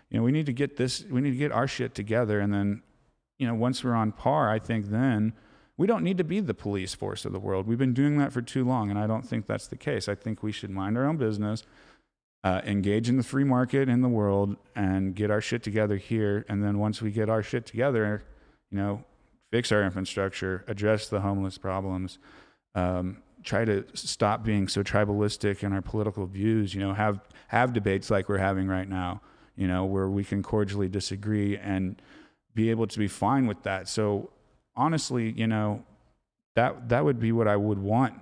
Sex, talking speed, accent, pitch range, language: male, 215 wpm, American, 95-115 Hz, English